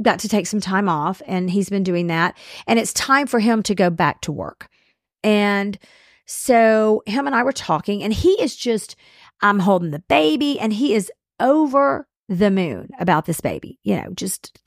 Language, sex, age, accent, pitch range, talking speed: English, female, 40-59, American, 185-255 Hz, 195 wpm